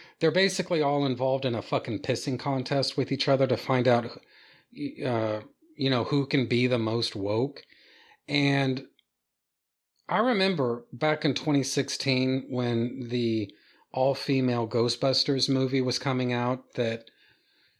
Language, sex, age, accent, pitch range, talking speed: English, male, 40-59, American, 120-145 Hz, 130 wpm